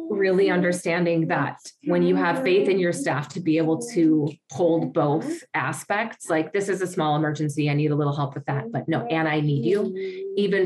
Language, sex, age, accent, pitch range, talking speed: English, female, 30-49, American, 160-195 Hz, 210 wpm